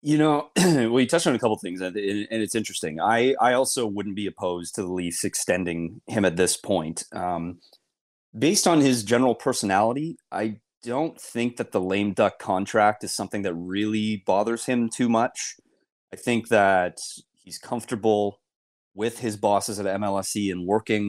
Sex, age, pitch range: male, 30-49, 95-115 Hz